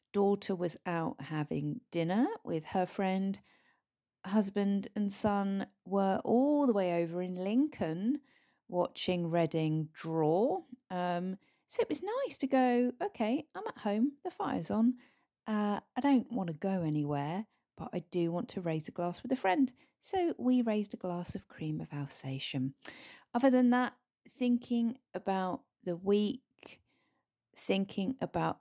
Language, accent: English, British